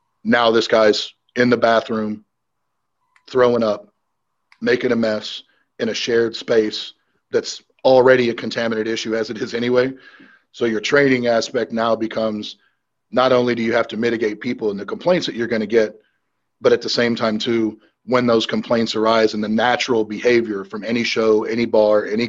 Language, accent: English, American